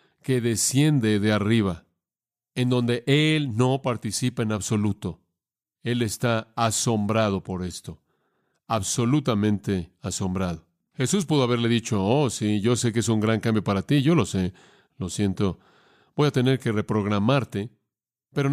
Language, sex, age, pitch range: English, male, 40-59, 105-135 Hz